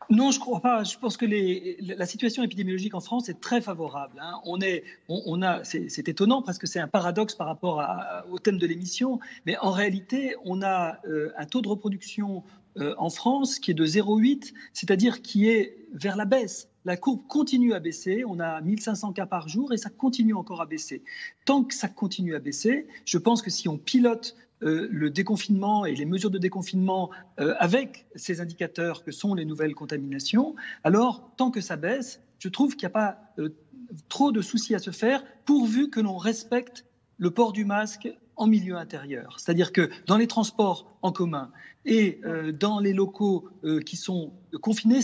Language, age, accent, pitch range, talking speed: French, 40-59, French, 175-230 Hz, 205 wpm